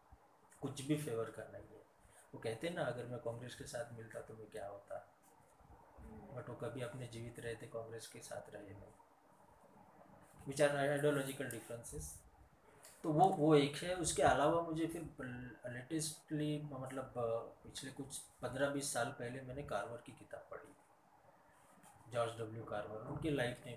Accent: native